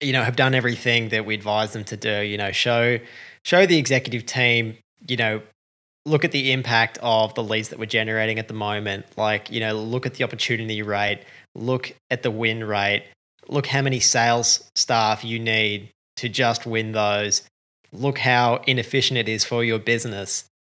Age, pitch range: 20-39, 110-130 Hz